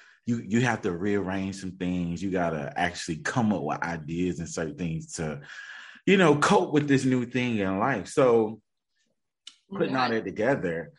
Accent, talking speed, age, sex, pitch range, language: American, 180 wpm, 30-49, male, 85-115 Hz, English